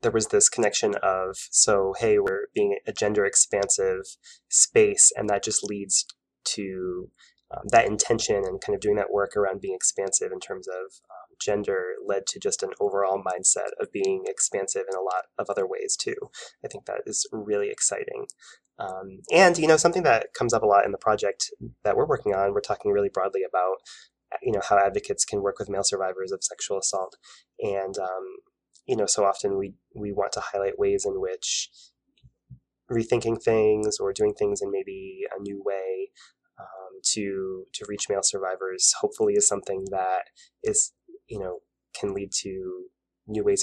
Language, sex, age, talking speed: English, male, 20-39, 185 wpm